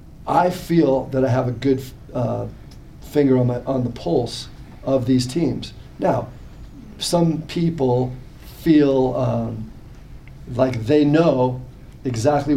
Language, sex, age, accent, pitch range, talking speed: English, male, 40-59, American, 125-145 Hz, 125 wpm